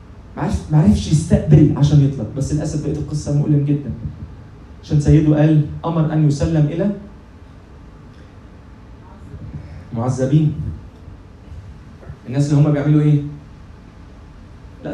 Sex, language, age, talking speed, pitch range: male, Arabic, 30-49, 110 wpm, 95-155 Hz